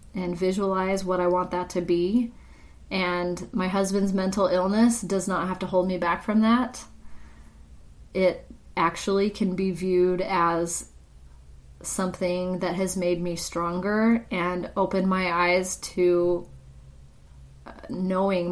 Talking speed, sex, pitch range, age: 130 wpm, female, 175-200 Hz, 30-49